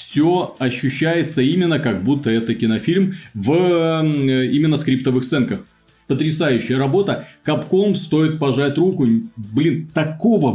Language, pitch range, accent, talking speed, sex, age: Russian, 125-165 Hz, native, 100 wpm, male, 30-49